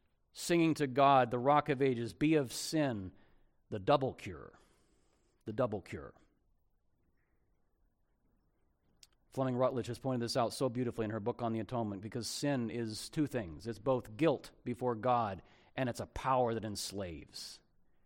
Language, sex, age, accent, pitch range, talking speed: English, male, 40-59, American, 115-140 Hz, 155 wpm